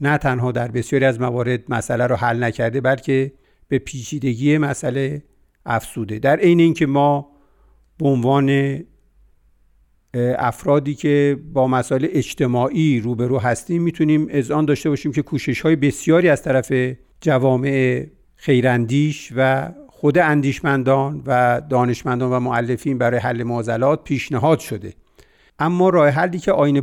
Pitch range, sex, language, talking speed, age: 125-155 Hz, male, Persian, 130 wpm, 50-69